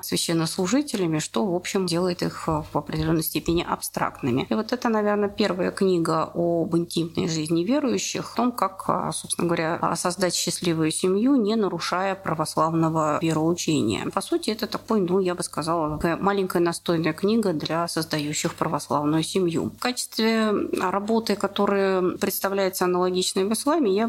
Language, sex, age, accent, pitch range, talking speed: Russian, female, 30-49, native, 165-205 Hz, 140 wpm